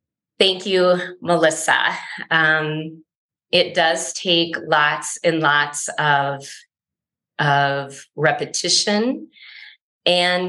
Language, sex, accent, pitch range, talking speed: English, female, American, 160-200 Hz, 80 wpm